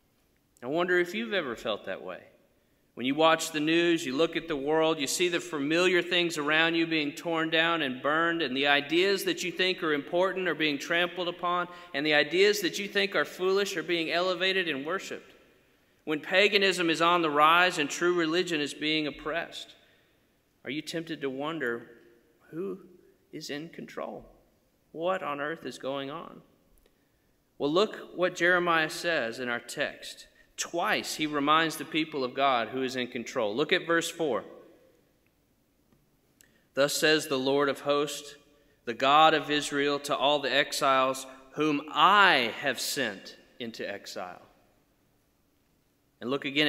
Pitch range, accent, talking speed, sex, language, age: 145-175 Hz, American, 165 wpm, male, English, 40-59